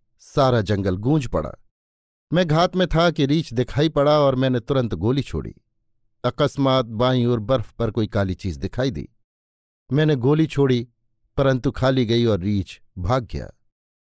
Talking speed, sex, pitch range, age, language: 160 wpm, male, 110-150 Hz, 50-69, Hindi